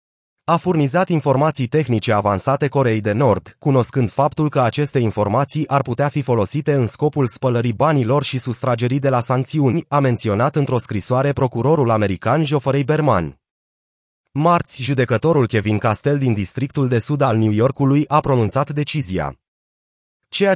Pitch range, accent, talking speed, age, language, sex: 120-150 Hz, native, 145 wpm, 30-49, Romanian, male